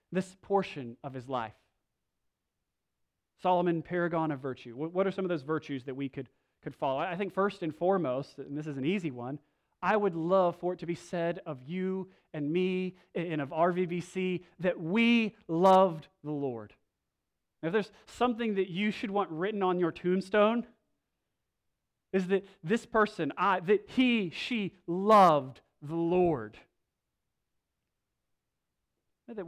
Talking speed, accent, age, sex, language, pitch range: 155 wpm, American, 30-49, male, English, 130-185 Hz